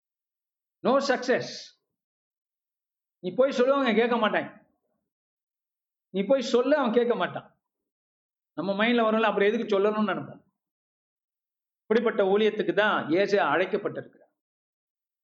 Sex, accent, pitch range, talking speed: male, native, 195-240 Hz, 45 wpm